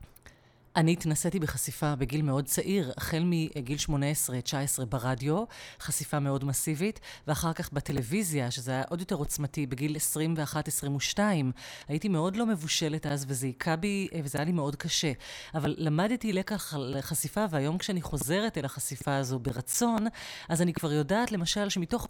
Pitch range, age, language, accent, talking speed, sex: 140-185 Hz, 30-49, Hebrew, native, 145 wpm, female